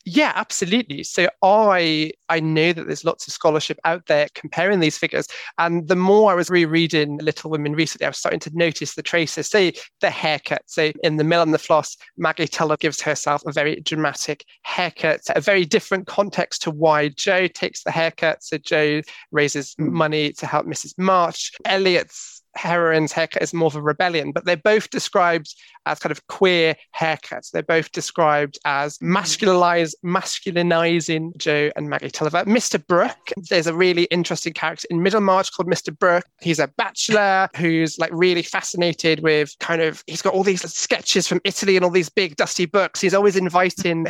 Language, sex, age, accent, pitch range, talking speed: English, male, 20-39, British, 160-190 Hz, 180 wpm